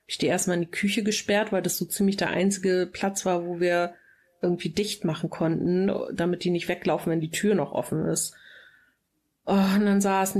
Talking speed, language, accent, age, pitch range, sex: 200 wpm, German, German, 30-49, 175-215 Hz, female